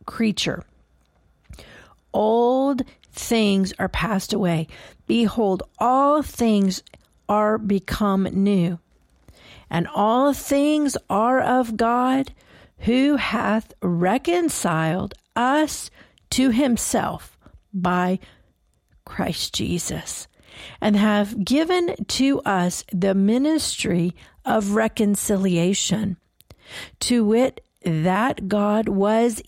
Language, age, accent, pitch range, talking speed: English, 50-69, American, 185-245 Hz, 85 wpm